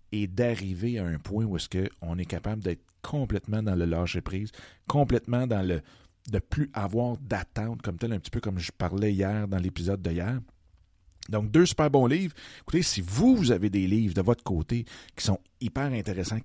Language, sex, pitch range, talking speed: French, male, 90-115 Hz, 195 wpm